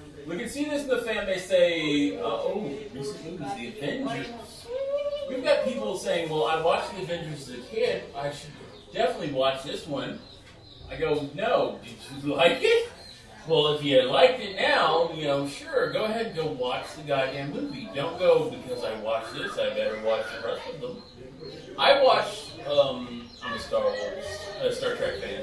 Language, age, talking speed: English, 30-49, 195 wpm